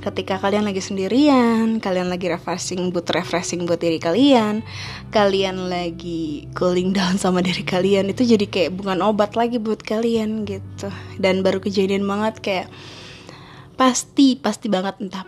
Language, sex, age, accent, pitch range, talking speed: Indonesian, female, 20-39, native, 180-225 Hz, 145 wpm